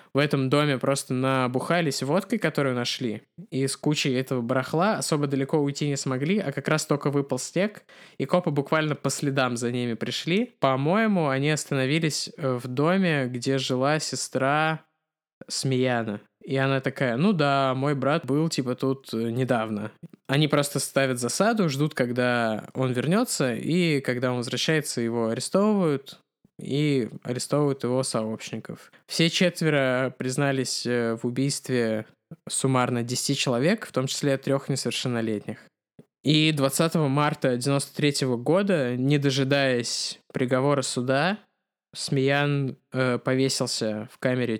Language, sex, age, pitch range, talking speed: Russian, male, 20-39, 125-150 Hz, 130 wpm